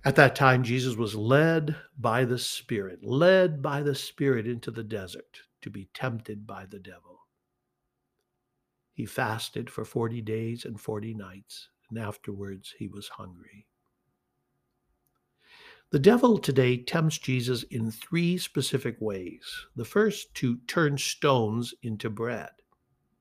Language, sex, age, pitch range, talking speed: English, male, 60-79, 110-155 Hz, 130 wpm